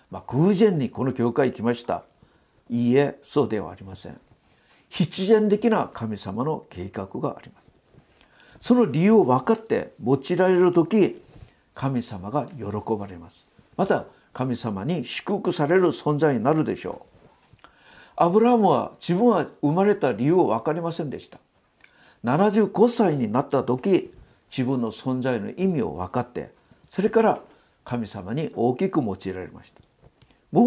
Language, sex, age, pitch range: Japanese, male, 50-69, 125-205 Hz